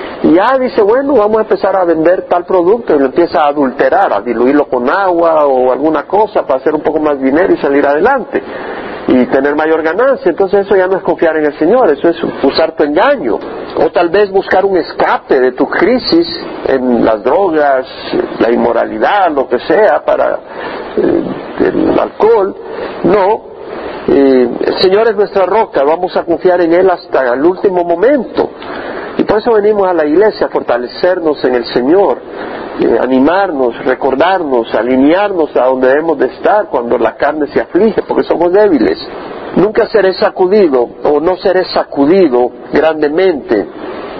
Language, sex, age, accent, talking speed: Spanish, male, 50-69, Mexican, 165 wpm